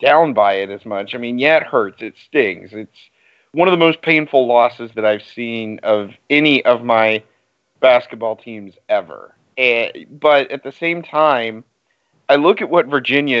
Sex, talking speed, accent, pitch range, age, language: male, 180 wpm, American, 110-140 Hz, 40-59, English